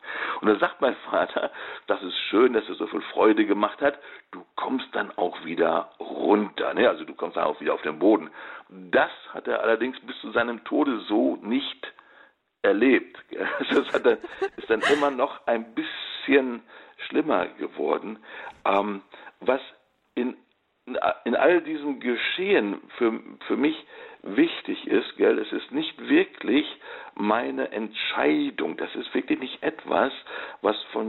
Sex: male